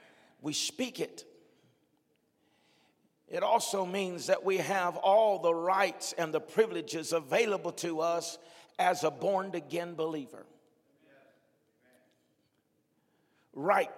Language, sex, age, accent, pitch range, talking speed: English, male, 50-69, American, 170-220 Hz, 100 wpm